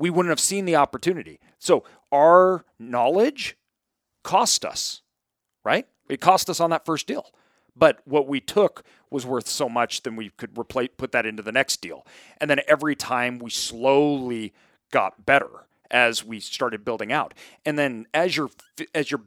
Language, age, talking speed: English, 40-59, 175 wpm